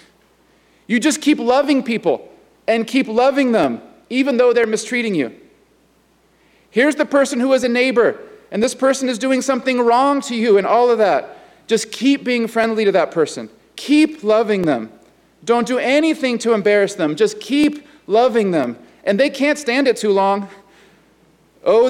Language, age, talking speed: English, 40-59, 170 wpm